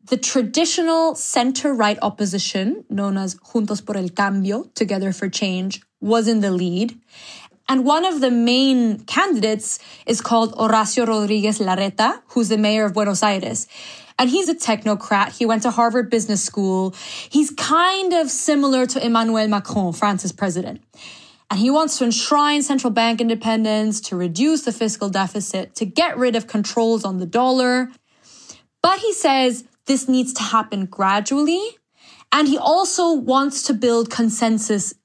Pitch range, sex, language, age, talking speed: 205-270 Hz, female, English, 20-39, 150 wpm